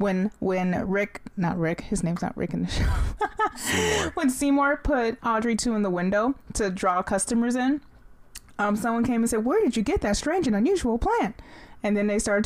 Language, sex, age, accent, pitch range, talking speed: English, female, 20-39, American, 190-245 Hz, 200 wpm